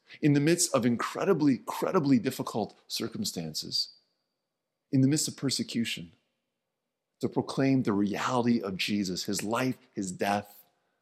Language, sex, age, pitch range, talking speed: English, male, 30-49, 110-140 Hz, 125 wpm